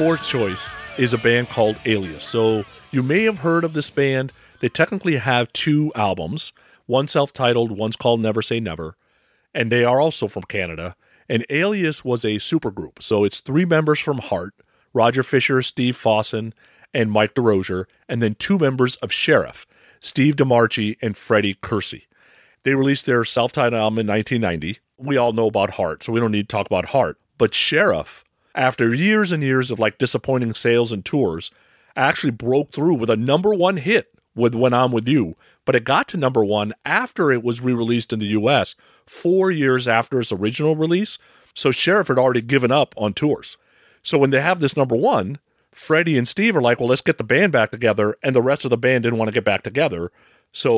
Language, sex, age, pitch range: English, male, 40-59, 110-140 Hz